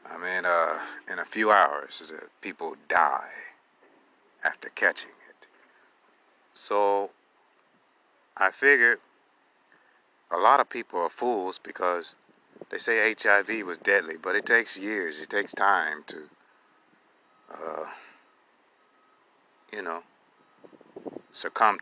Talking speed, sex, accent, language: 105 wpm, male, American, English